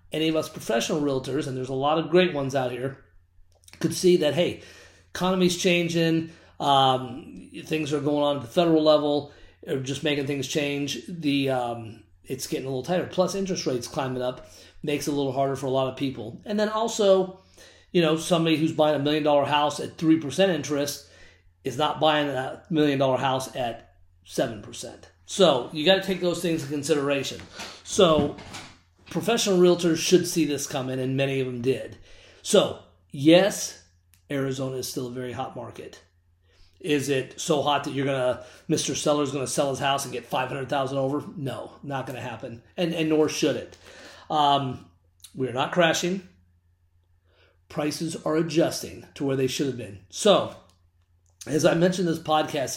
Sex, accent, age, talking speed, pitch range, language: male, American, 30-49, 175 wpm, 125-160 Hz, English